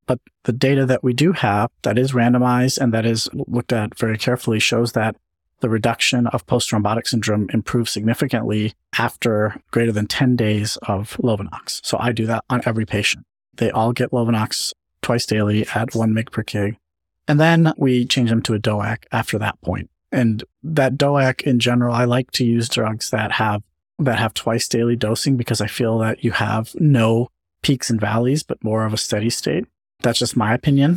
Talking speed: 190 wpm